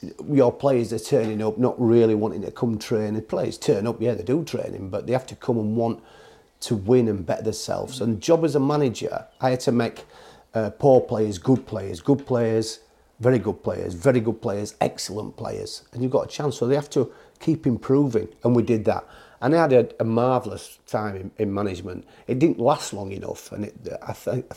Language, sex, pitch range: English, male, 105-125 Hz